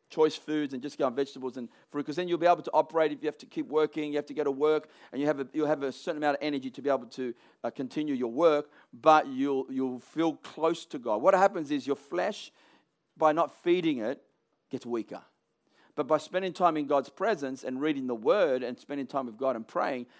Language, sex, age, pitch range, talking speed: English, male, 40-59, 150-230 Hz, 240 wpm